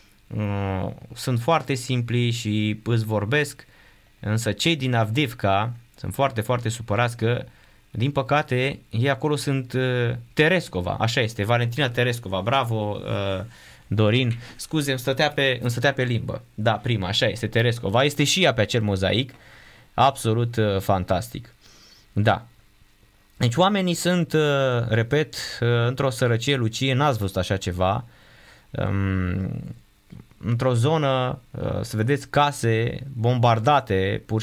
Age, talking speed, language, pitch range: 20-39, 115 wpm, Romanian, 105-135 Hz